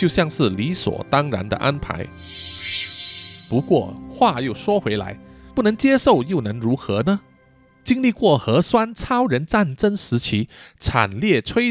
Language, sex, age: Chinese, male, 20-39